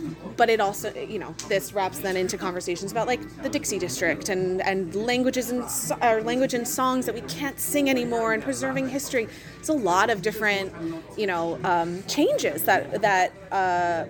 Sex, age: female, 20-39